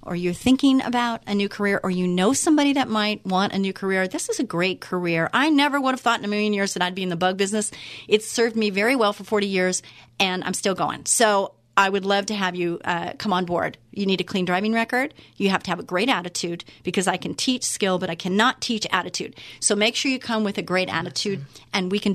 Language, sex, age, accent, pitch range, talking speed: English, female, 40-59, American, 190-230 Hz, 260 wpm